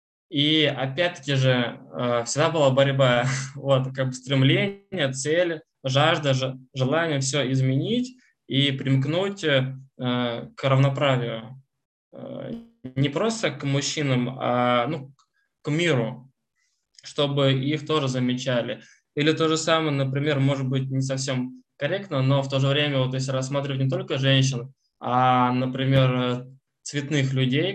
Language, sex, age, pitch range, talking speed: Russian, male, 20-39, 130-145 Hz, 120 wpm